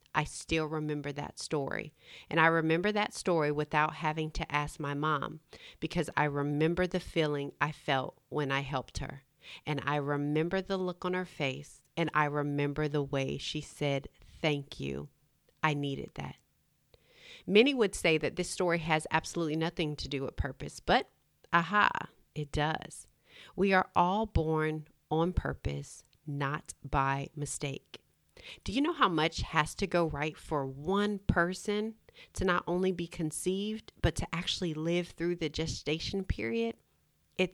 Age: 40-59